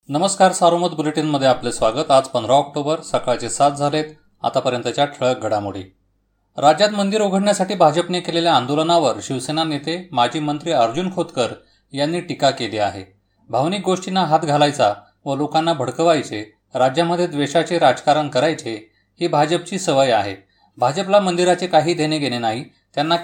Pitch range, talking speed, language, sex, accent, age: 110-170 Hz, 135 wpm, Marathi, male, native, 30-49